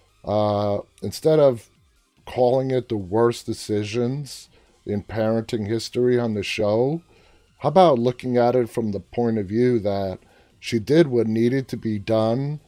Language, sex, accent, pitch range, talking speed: English, male, American, 105-135 Hz, 150 wpm